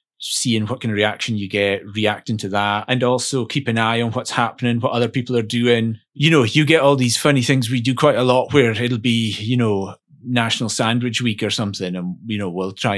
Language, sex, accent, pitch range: English, male, British, 110-140 Hz